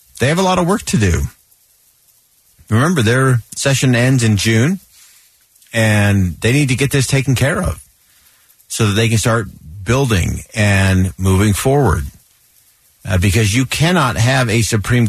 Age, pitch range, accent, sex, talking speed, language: 50-69, 105-135 Hz, American, male, 155 wpm, English